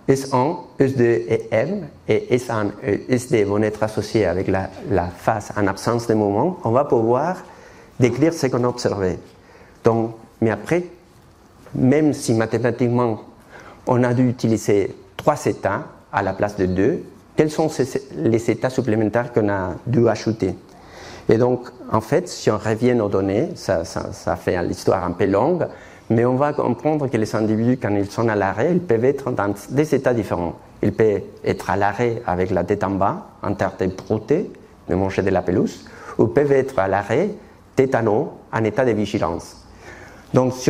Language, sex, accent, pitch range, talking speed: French, male, French, 100-125 Hz, 180 wpm